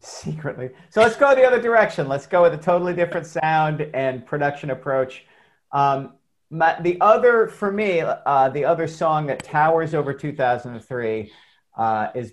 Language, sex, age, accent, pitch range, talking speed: English, male, 40-59, American, 130-175 Hz, 155 wpm